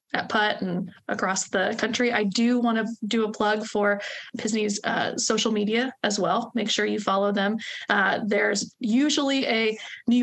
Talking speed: 175 wpm